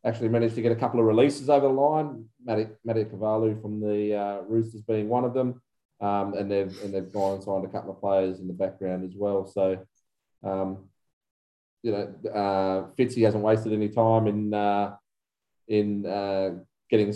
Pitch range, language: 100-115 Hz, English